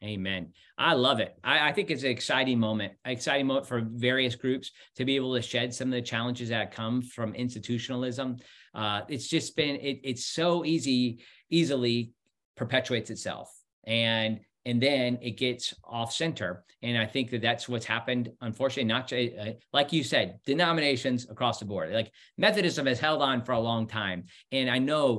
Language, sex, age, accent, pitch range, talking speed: English, male, 40-59, American, 115-145 Hz, 185 wpm